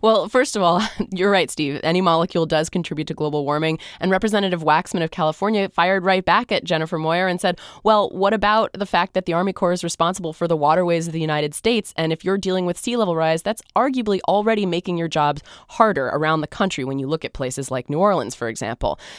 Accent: American